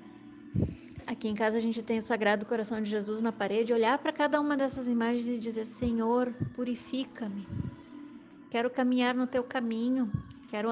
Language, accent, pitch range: Portuguese, Brazilian, 220-260 Hz